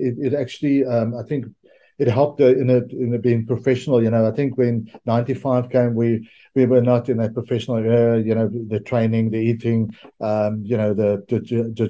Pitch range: 115-130 Hz